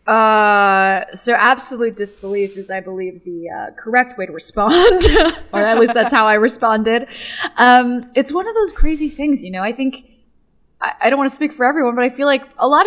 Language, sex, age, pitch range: English, female, 10-29, 190-245 Hz